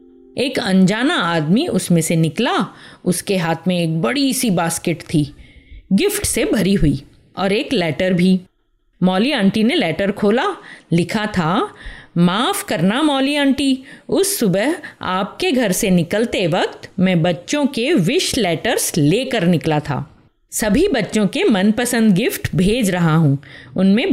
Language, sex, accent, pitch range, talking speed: Hindi, female, native, 165-240 Hz, 140 wpm